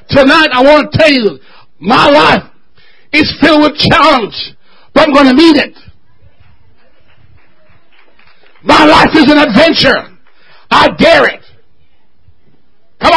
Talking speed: 125 wpm